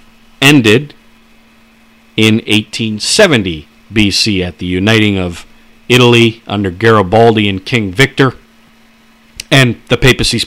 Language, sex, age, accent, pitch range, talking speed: English, male, 50-69, American, 105-130 Hz, 95 wpm